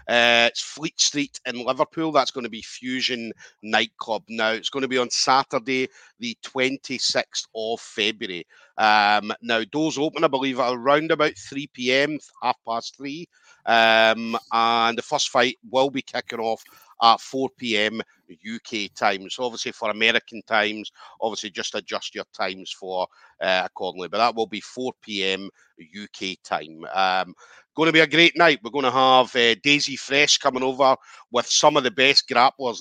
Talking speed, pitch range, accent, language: 165 wpm, 110-135 Hz, British, English